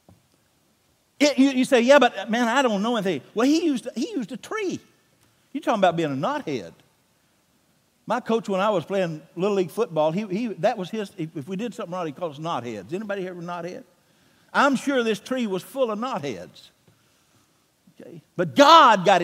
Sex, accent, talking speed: male, American, 195 wpm